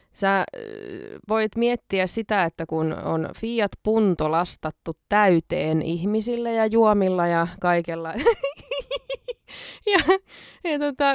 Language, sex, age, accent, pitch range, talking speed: Finnish, female, 20-39, native, 185-250 Hz, 100 wpm